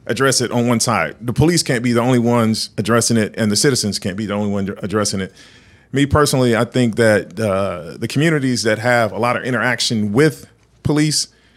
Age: 40-59